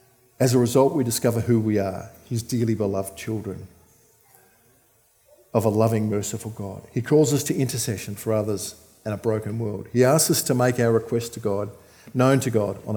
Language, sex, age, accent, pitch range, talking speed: English, male, 50-69, Australian, 105-125 Hz, 190 wpm